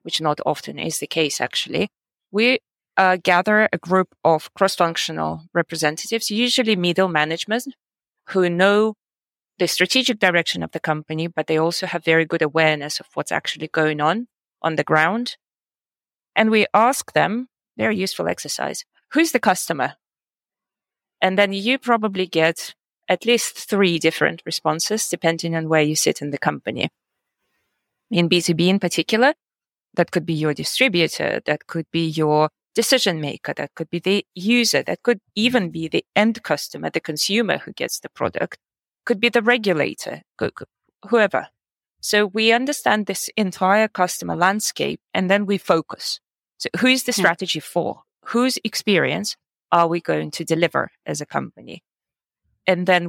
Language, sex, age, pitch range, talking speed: French, female, 30-49, 165-220 Hz, 155 wpm